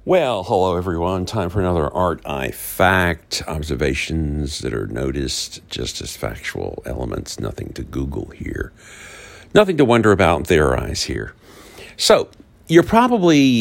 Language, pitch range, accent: English, 80-105 Hz, American